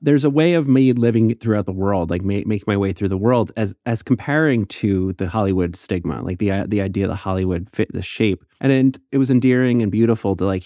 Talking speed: 240 wpm